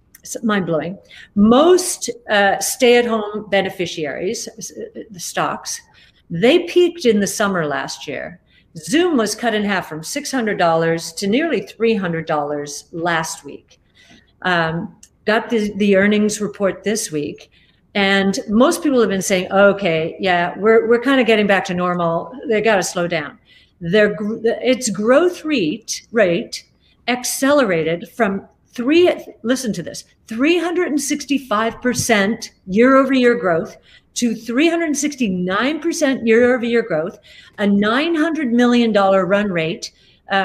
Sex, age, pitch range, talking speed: female, 50-69, 195-270 Hz, 125 wpm